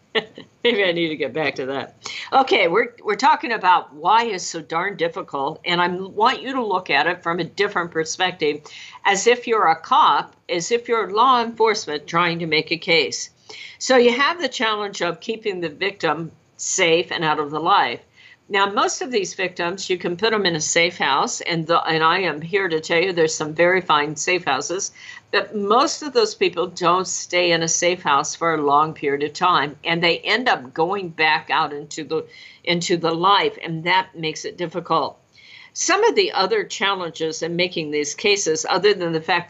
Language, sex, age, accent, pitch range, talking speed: English, female, 50-69, American, 165-205 Hz, 205 wpm